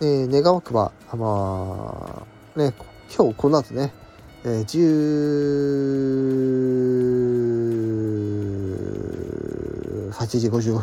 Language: Japanese